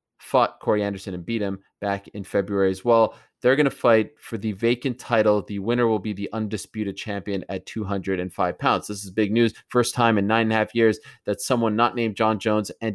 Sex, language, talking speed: male, English, 220 wpm